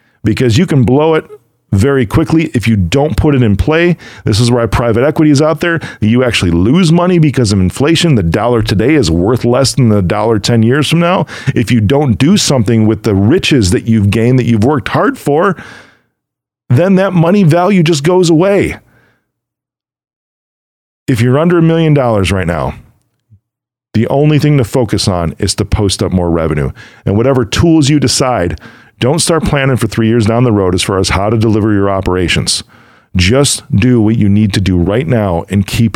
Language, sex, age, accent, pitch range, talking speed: English, male, 40-59, American, 105-135 Hz, 195 wpm